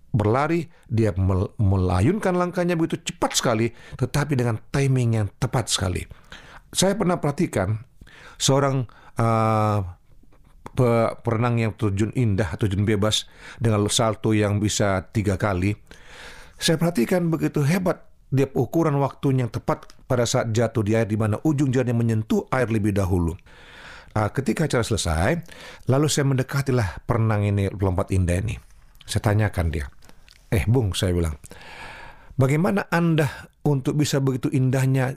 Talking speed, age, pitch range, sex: 130 wpm, 40-59, 105-135 Hz, male